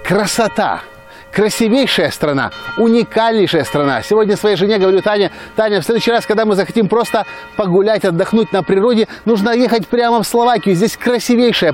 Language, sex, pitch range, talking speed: Russian, male, 150-220 Hz, 150 wpm